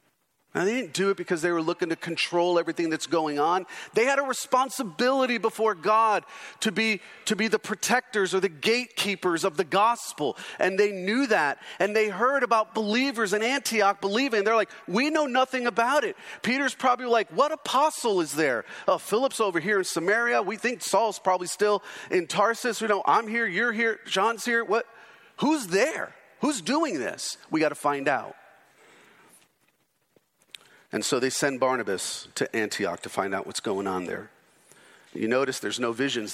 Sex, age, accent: male, 40-59, American